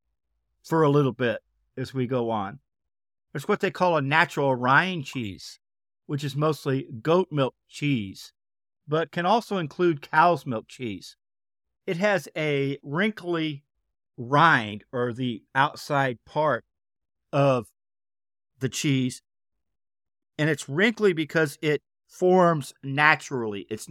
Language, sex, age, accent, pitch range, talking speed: English, male, 50-69, American, 120-165 Hz, 125 wpm